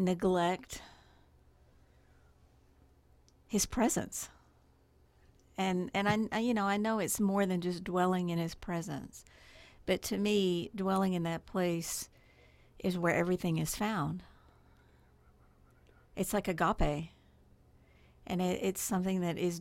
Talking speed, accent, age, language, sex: 120 wpm, American, 60-79, English, female